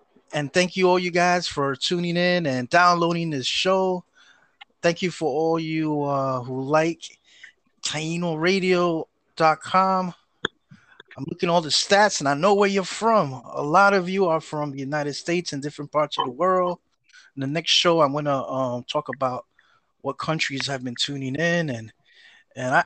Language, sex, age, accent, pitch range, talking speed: English, male, 20-39, American, 145-190 Hz, 175 wpm